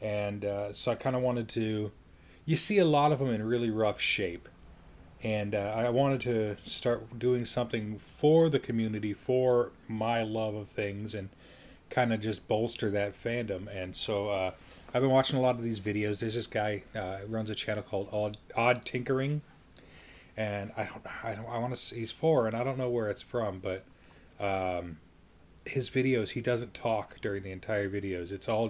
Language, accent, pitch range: English, American, 95-120 Hz